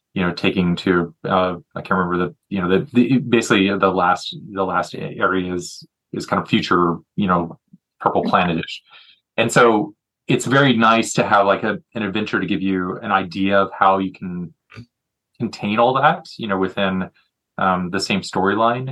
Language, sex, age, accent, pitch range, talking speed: English, male, 30-49, American, 95-120 Hz, 185 wpm